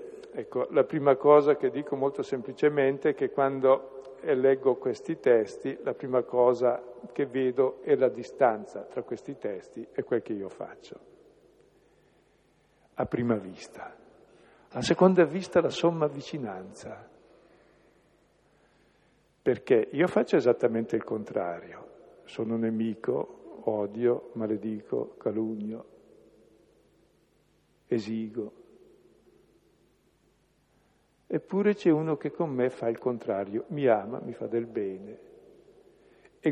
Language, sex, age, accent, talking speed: Italian, male, 50-69, native, 110 wpm